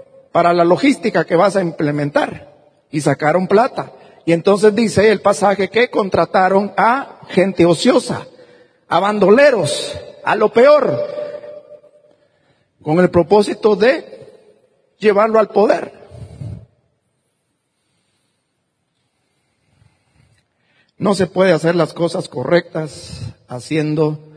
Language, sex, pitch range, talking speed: Spanish, male, 140-200 Hz, 100 wpm